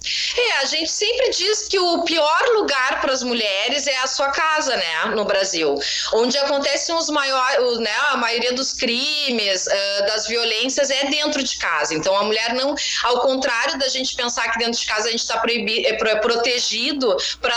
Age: 20-39